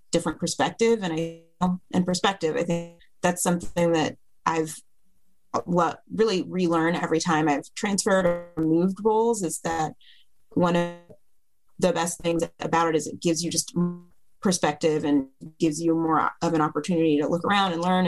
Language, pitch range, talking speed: English, 160-185 Hz, 165 wpm